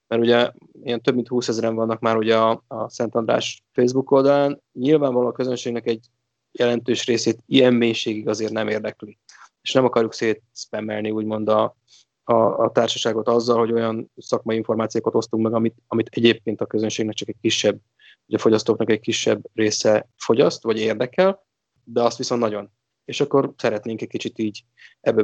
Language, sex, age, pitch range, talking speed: Hungarian, male, 20-39, 110-125 Hz, 170 wpm